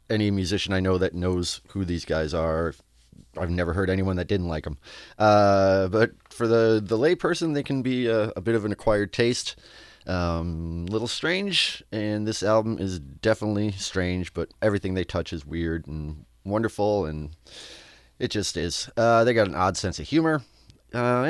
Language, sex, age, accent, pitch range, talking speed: English, male, 30-49, American, 90-140 Hz, 185 wpm